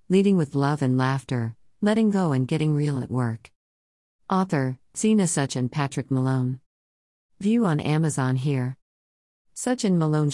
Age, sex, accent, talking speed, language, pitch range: 50-69, female, American, 145 wpm, English, 130-155 Hz